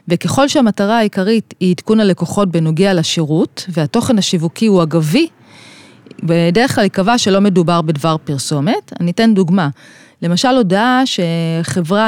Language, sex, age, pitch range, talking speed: Hebrew, female, 30-49, 165-230 Hz, 125 wpm